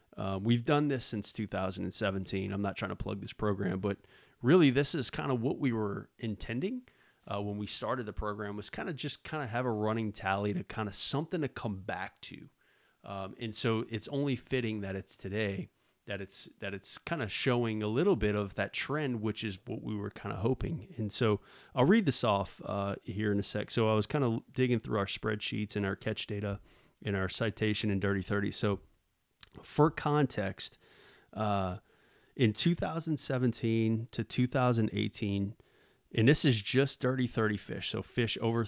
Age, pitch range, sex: 30-49, 100-125 Hz, male